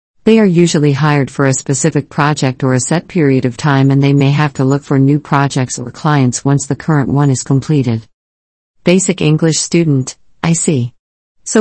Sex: female